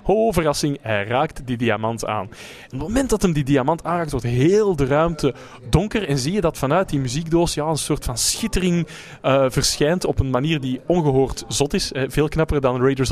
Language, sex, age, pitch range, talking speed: Dutch, male, 20-39, 125-165 Hz, 215 wpm